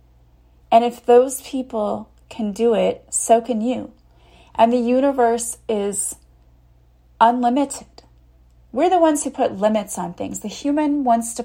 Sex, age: female, 30-49